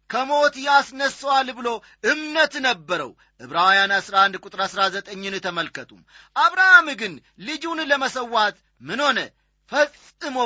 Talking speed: 100 wpm